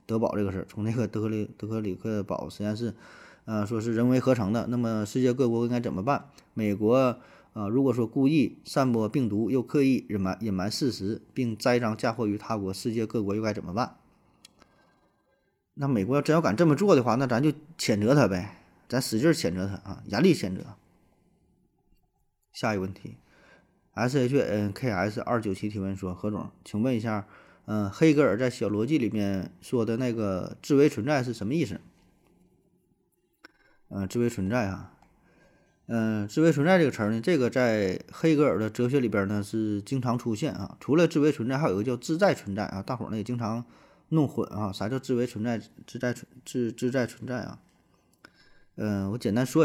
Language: Chinese